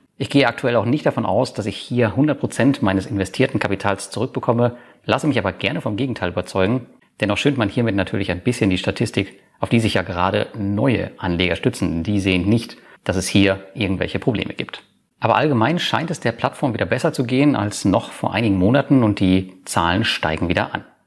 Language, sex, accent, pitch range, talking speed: German, male, German, 95-125 Hz, 200 wpm